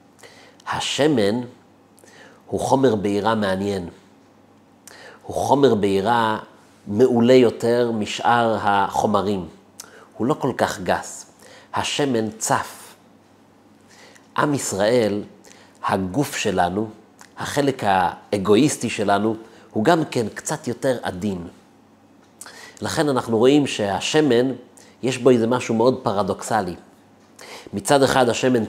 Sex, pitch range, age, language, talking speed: male, 105-130 Hz, 40-59, Hebrew, 95 wpm